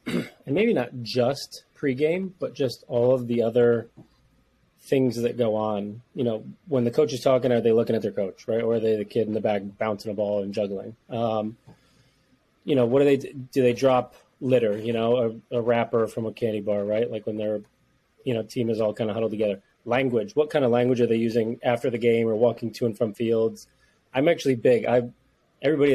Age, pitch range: 30-49, 110-125 Hz